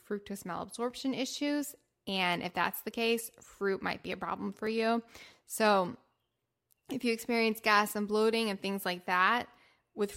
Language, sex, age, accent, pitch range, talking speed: English, female, 10-29, American, 190-225 Hz, 160 wpm